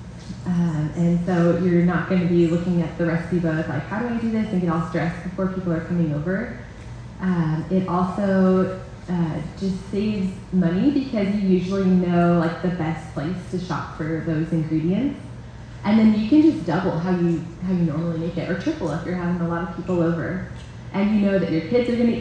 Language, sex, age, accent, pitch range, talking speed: English, female, 20-39, American, 170-200 Hz, 220 wpm